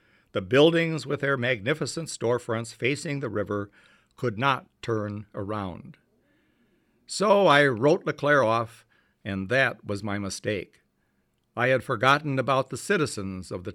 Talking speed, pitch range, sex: 135 wpm, 110-135 Hz, male